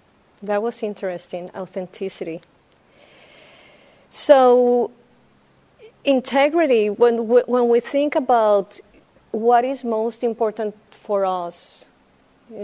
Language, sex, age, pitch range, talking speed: English, female, 40-59, 190-230 Hz, 85 wpm